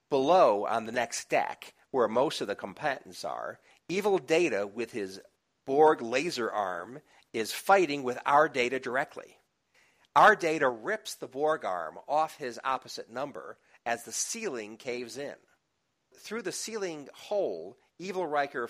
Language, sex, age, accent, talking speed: English, male, 50-69, American, 145 wpm